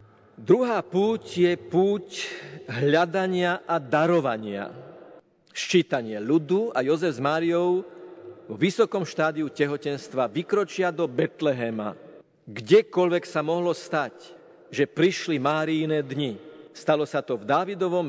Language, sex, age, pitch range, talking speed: Slovak, male, 50-69, 140-175 Hz, 115 wpm